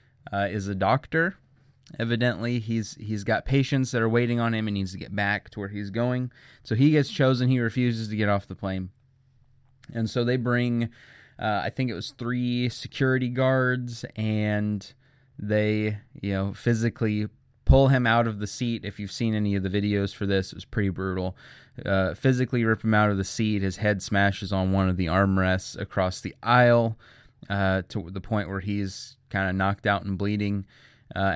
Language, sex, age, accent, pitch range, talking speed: English, male, 20-39, American, 100-125 Hz, 195 wpm